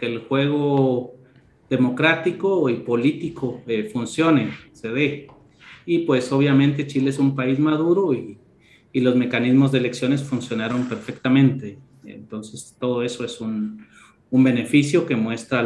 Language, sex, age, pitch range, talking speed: Spanish, male, 40-59, 115-145 Hz, 130 wpm